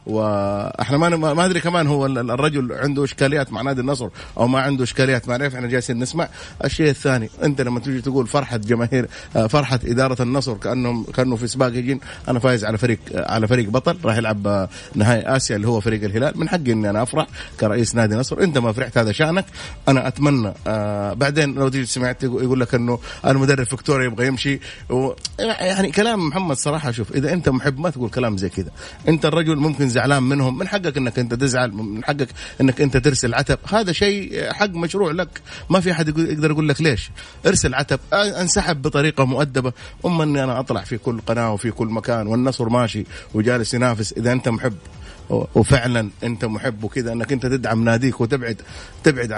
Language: English